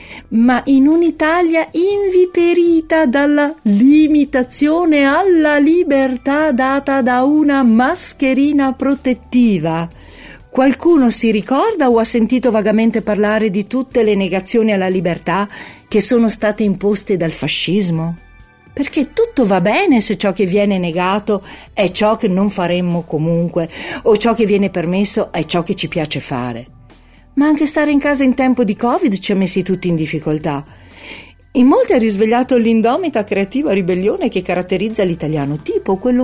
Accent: native